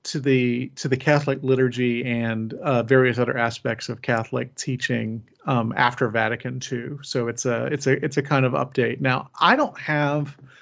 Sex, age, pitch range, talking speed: male, 40-59, 120-145 Hz, 180 wpm